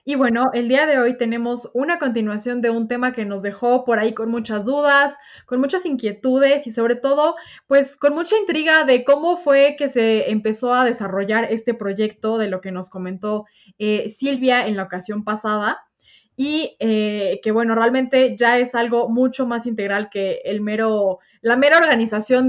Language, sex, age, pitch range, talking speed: Spanish, female, 20-39, 215-265 Hz, 180 wpm